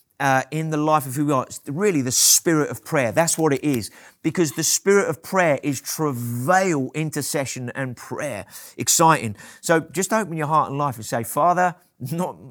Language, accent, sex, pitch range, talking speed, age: English, British, male, 140-185 Hz, 190 wpm, 30-49